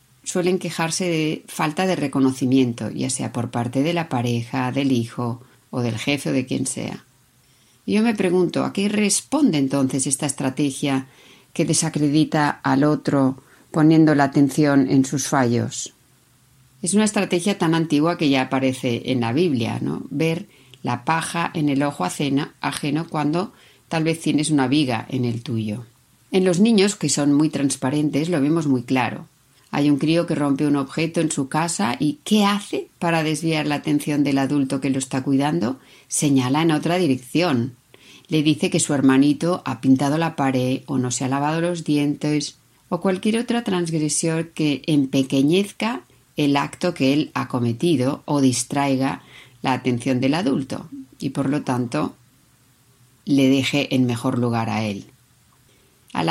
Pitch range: 130-160 Hz